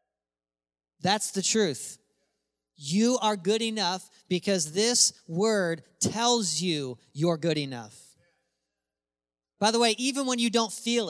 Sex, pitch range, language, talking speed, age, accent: male, 155-210 Hz, English, 125 wpm, 40-59, American